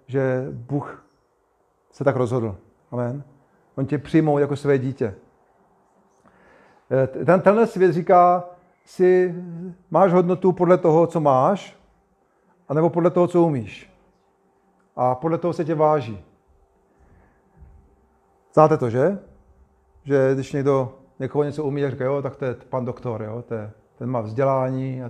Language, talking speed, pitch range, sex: Czech, 140 wpm, 130-165 Hz, male